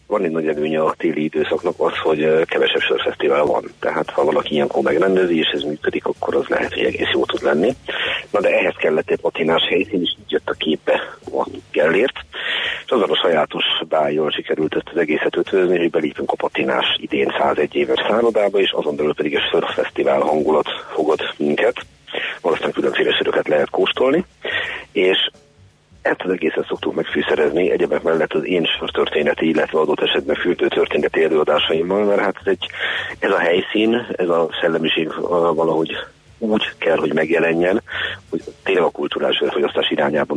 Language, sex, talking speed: Hungarian, male, 165 wpm